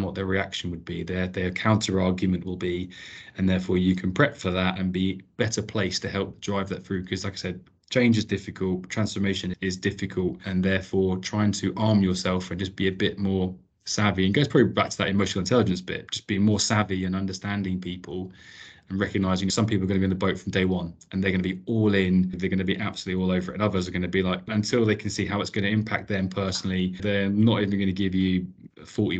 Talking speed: 245 wpm